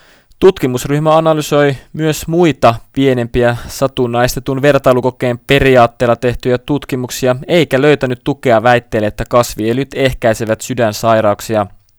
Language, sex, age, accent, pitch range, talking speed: Finnish, male, 20-39, native, 115-140 Hz, 90 wpm